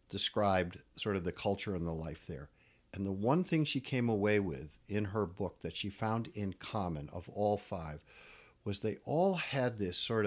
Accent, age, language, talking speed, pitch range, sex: American, 50-69, English, 200 wpm, 95-125 Hz, male